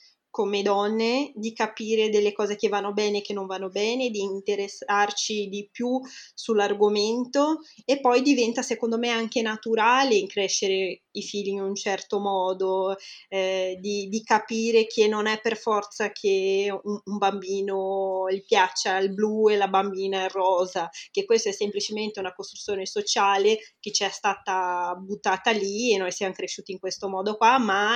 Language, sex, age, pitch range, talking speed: Italian, female, 20-39, 200-230 Hz, 165 wpm